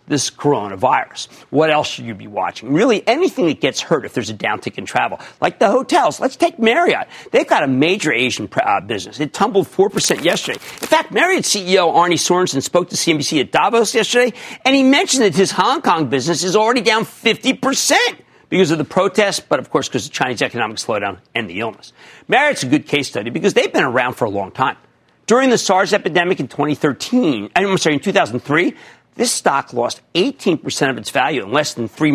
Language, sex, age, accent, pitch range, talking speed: English, male, 50-69, American, 145-225 Hz, 205 wpm